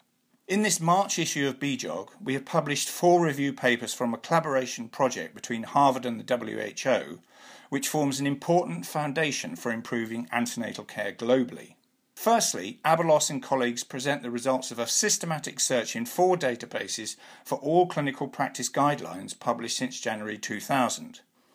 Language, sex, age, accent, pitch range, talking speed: English, male, 50-69, British, 120-165 Hz, 150 wpm